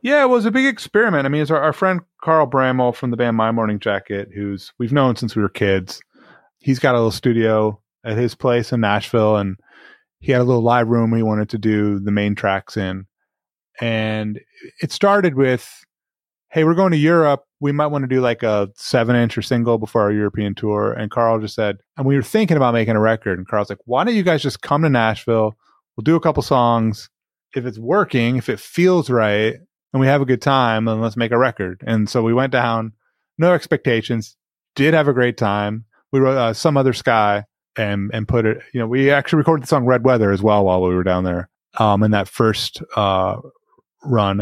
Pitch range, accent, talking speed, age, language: 110-140 Hz, American, 225 wpm, 30-49, English